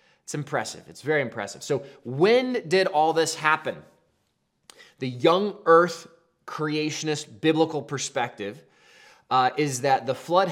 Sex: male